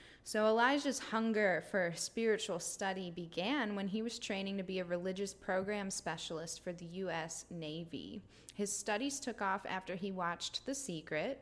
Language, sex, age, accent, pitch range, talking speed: English, female, 20-39, American, 175-215 Hz, 160 wpm